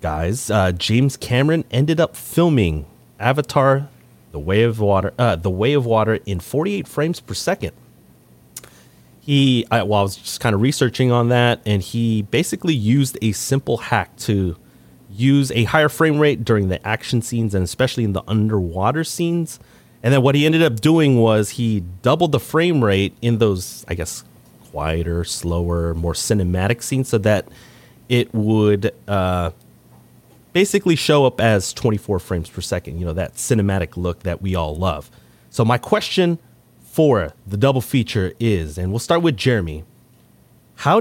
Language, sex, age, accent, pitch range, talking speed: English, male, 30-49, American, 95-130 Hz, 165 wpm